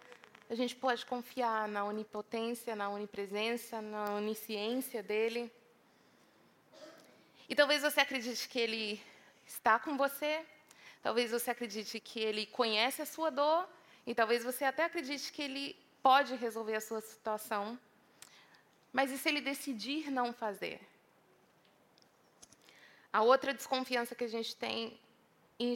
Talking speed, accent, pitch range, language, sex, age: 130 wpm, Brazilian, 230-310 Hz, English, female, 20-39